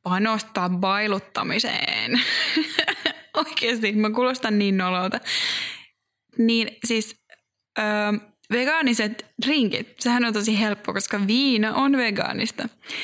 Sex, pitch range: female, 195-235 Hz